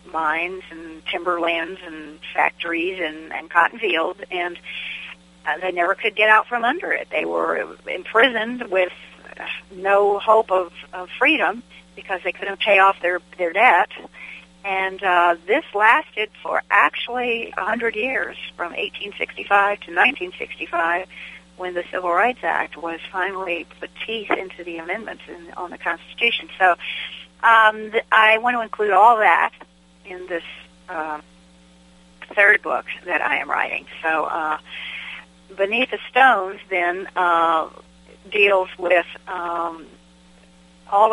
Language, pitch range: English, 165-195 Hz